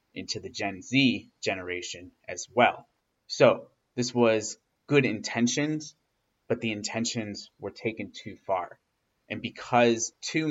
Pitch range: 95-120 Hz